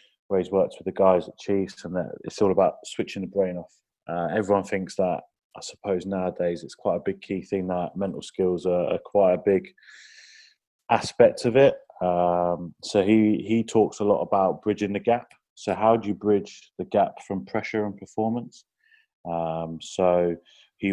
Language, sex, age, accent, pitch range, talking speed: English, male, 20-39, British, 90-105 Hz, 190 wpm